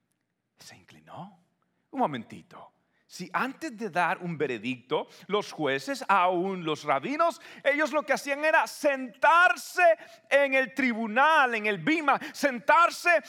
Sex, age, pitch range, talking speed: male, 40-59, 200-290 Hz, 125 wpm